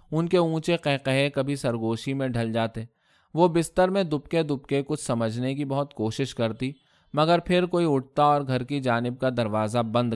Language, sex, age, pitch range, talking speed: Urdu, male, 20-39, 120-160 Hz, 190 wpm